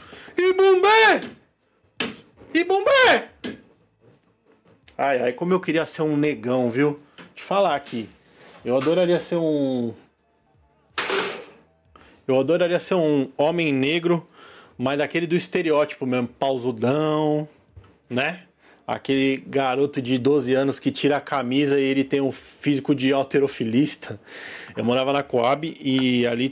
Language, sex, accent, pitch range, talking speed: Portuguese, male, Brazilian, 125-160 Hz, 125 wpm